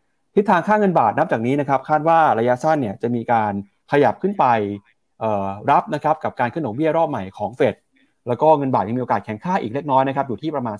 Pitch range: 115-160 Hz